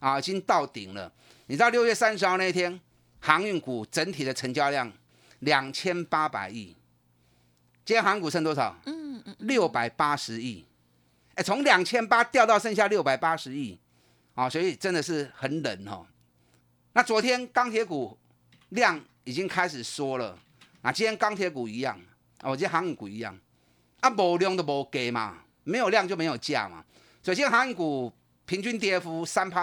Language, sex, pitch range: Chinese, male, 120-195 Hz